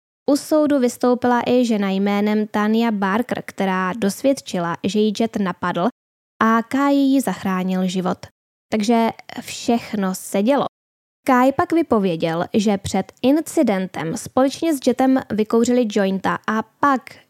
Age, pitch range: 10-29, 200-255 Hz